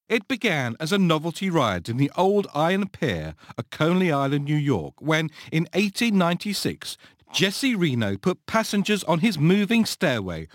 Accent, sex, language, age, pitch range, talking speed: British, male, English, 50-69, 140-200 Hz, 155 wpm